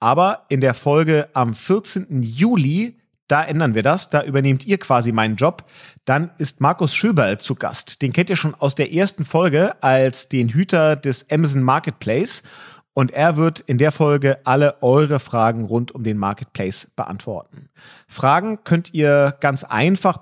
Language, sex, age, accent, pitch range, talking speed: German, male, 40-59, German, 125-160 Hz, 165 wpm